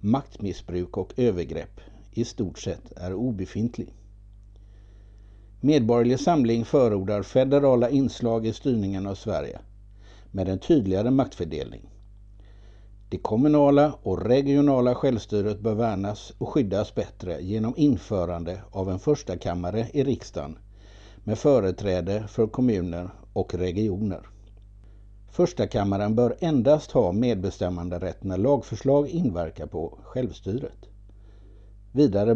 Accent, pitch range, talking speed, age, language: native, 100-125 Hz, 110 wpm, 60-79, Swedish